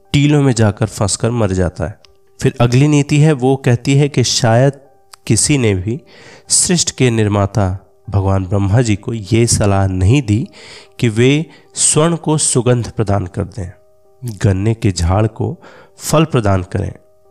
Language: Hindi